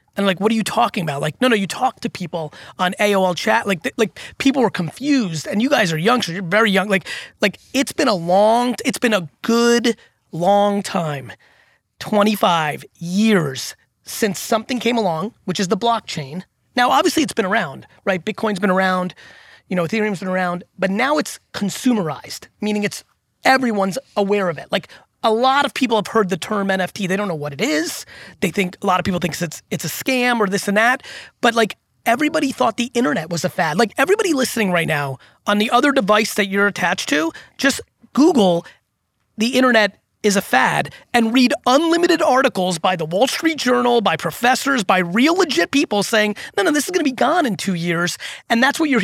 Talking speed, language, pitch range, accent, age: 205 wpm, English, 185-245 Hz, American, 30-49